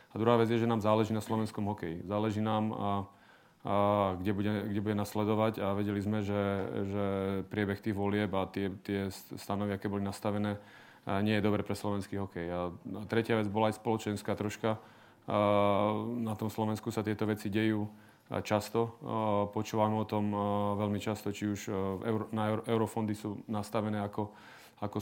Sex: male